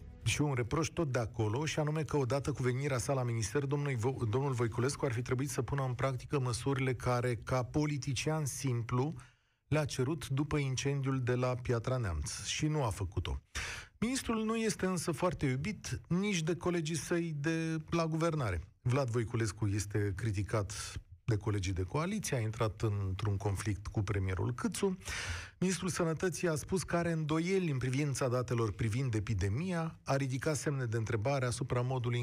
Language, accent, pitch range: Romanian, native, 110-155 Hz